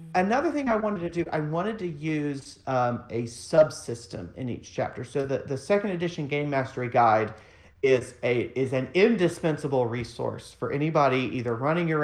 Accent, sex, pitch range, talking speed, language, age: American, male, 120-165 Hz, 175 wpm, English, 40-59